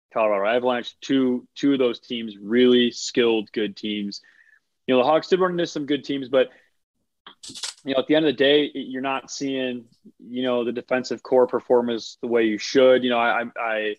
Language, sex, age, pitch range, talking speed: English, male, 20-39, 105-130 Hz, 200 wpm